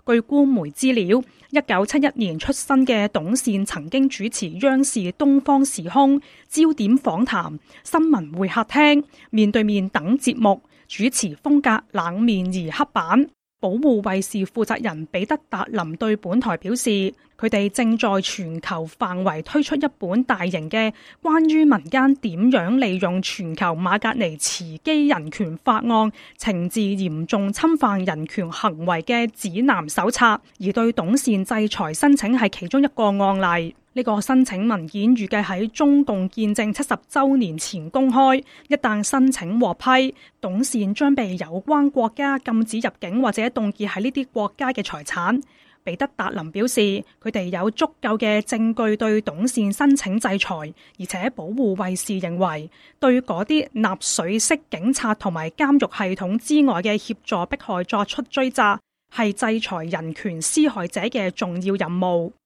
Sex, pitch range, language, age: female, 195-260 Hz, English, 20-39